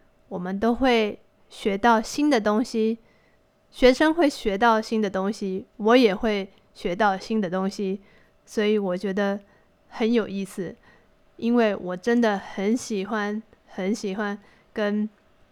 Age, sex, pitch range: 20-39, female, 205-240 Hz